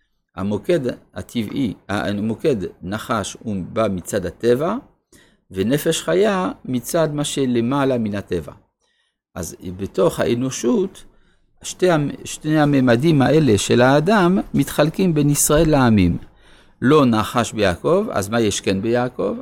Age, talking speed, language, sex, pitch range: 50-69, 110 wpm, Hebrew, male, 110-155 Hz